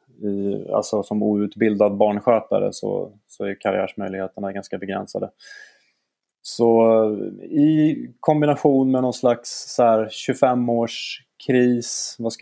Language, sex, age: Swedish, male, 30-49